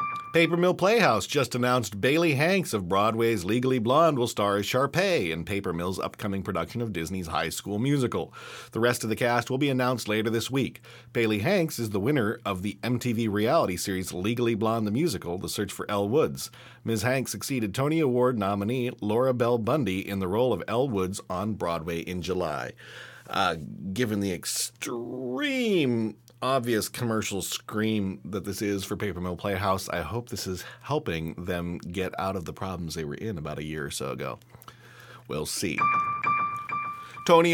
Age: 40-59